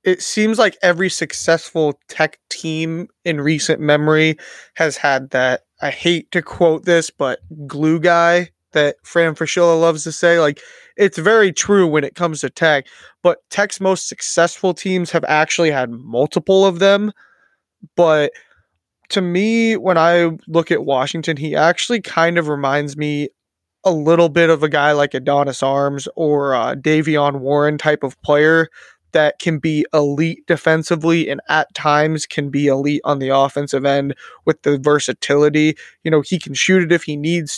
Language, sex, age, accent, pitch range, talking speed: English, male, 20-39, American, 145-175 Hz, 165 wpm